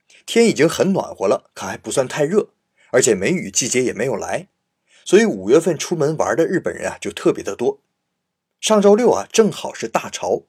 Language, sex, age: Chinese, male, 30-49